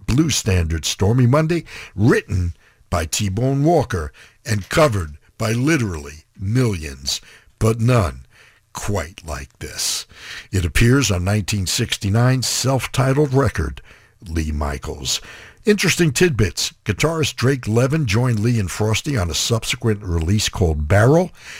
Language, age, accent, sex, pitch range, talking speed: English, 60-79, American, male, 85-125 Hz, 115 wpm